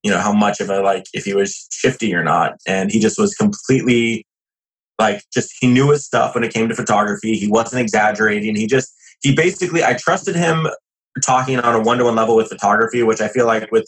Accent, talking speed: American, 230 wpm